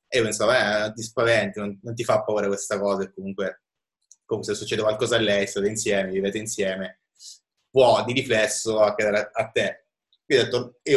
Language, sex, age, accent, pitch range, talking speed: Italian, male, 20-39, native, 95-110 Hz, 190 wpm